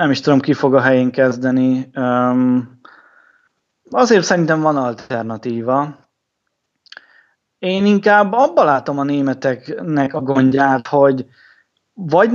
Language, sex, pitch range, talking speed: Hungarian, male, 135-170 Hz, 105 wpm